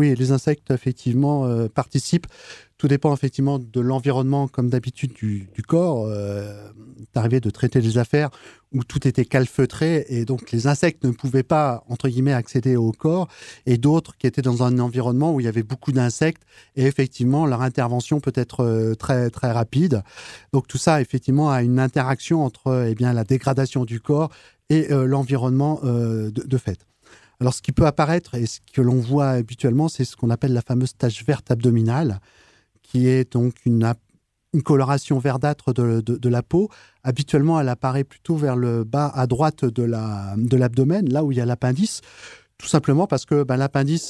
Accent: French